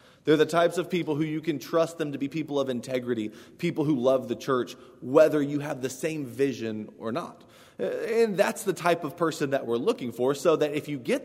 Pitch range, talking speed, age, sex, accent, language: 125-160 Hz, 230 wpm, 20-39, male, American, English